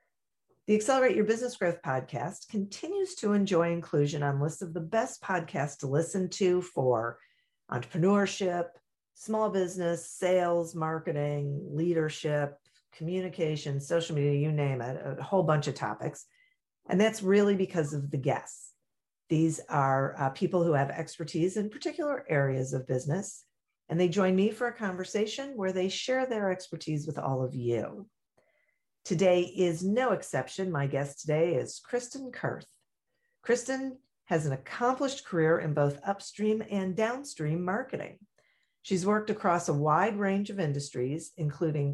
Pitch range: 150-210 Hz